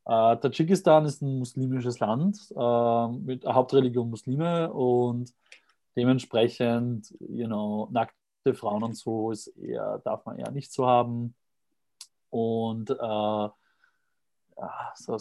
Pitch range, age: 110-130 Hz, 20-39